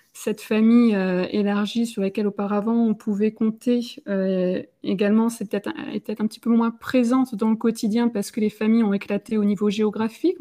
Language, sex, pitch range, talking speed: French, female, 195-230 Hz, 185 wpm